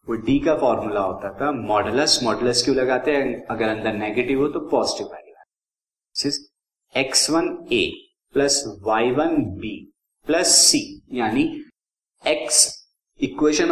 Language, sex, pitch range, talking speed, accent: Hindi, male, 120-160 Hz, 110 wpm, native